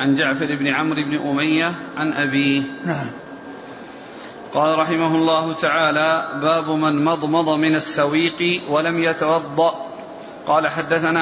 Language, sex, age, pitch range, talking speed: Arabic, male, 40-59, 155-165 Hz, 110 wpm